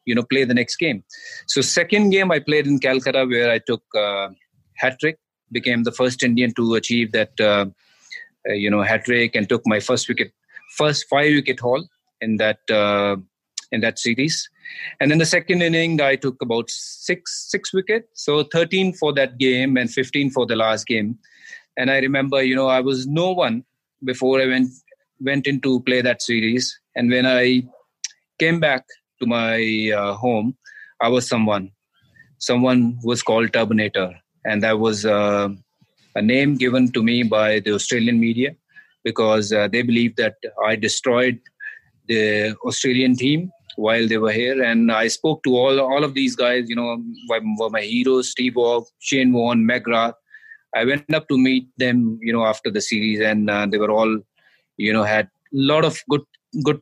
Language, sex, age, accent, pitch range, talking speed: English, male, 30-49, Indian, 115-140 Hz, 180 wpm